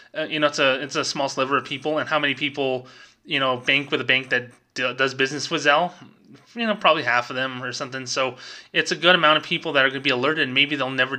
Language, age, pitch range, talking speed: English, 20-39, 125-150 Hz, 265 wpm